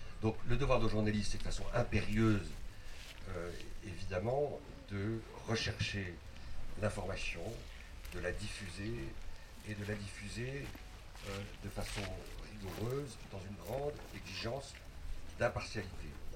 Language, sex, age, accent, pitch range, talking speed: French, male, 60-79, French, 90-105 Hz, 110 wpm